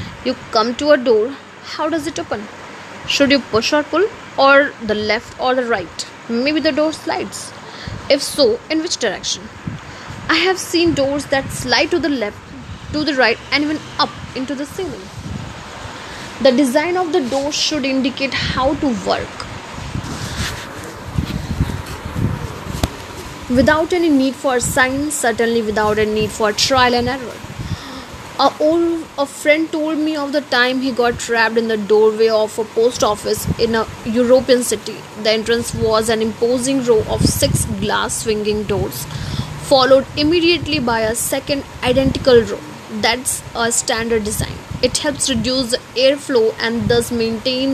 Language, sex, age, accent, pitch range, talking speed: Hindi, female, 20-39, native, 220-295 Hz, 155 wpm